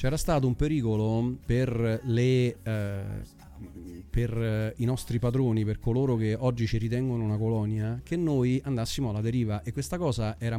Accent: native